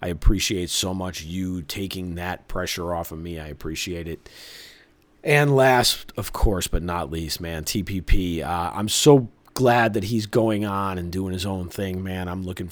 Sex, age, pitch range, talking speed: male, 30-49, 85-110 Hz, 185 wpm